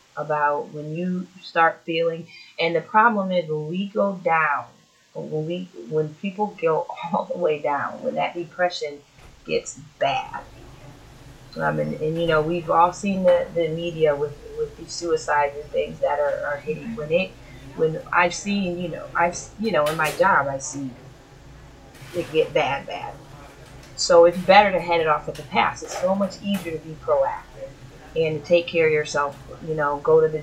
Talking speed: 185 wpm